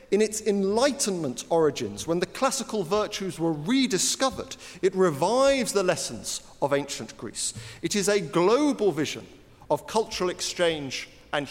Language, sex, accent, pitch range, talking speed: English, male, British, 140-200 Hz, 135 wpm